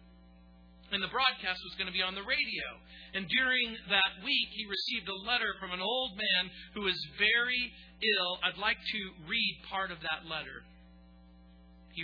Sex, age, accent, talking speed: male, 40-59, American, 175 wpm